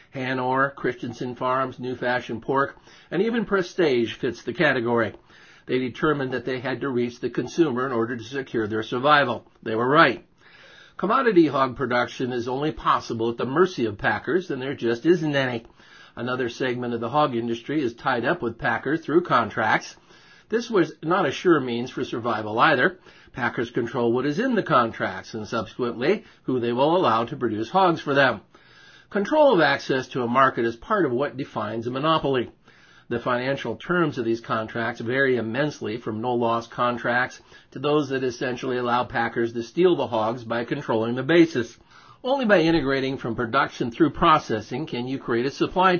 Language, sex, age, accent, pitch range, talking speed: English, male, 50-69, American, 115-145 Hz, 175 wpm